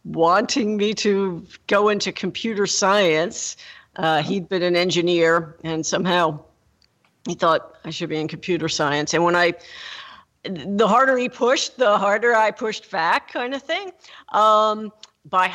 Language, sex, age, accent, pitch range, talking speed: English, female, 50-69, American, 165-205 Hz, 150 wpm